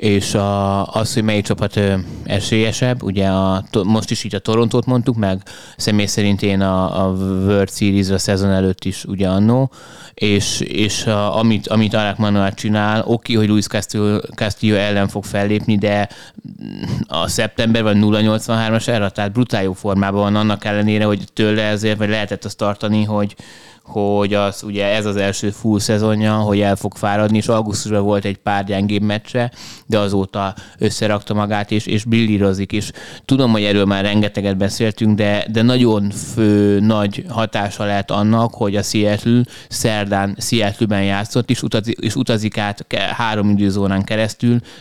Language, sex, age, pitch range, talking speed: Hungarian, male, 20-39, 100-110 Hz, 155 wpm